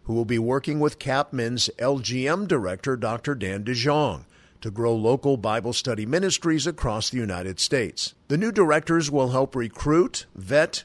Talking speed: 155 wpm